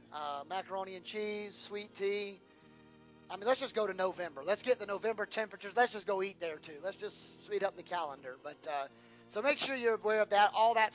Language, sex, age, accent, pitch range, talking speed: English, male, 30-49, American, 145-210 Hz, 225 wpm